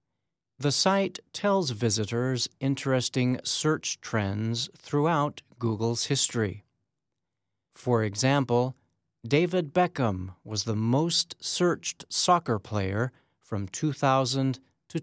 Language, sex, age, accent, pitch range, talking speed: English, male, 40-59, American, 110-140 Hz, 90 wpm